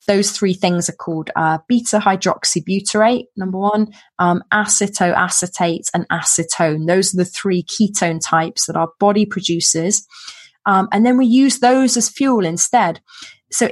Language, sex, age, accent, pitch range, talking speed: English, female, 20-39, British, 180-225 Hz, 145 wpm